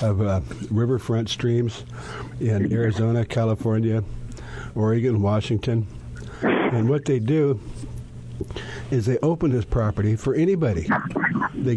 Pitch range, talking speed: 110-130 Hz, 105 wpm